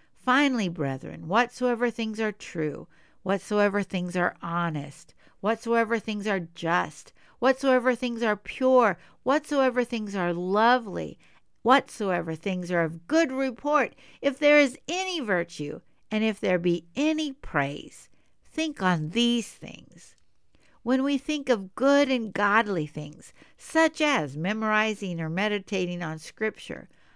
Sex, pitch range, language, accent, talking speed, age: female, 170-250 Hz, English, American, 130 wpm, 60-79